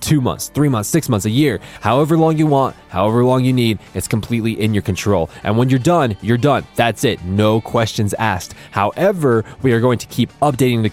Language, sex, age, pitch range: English, male, 20-39, 105-140 Hz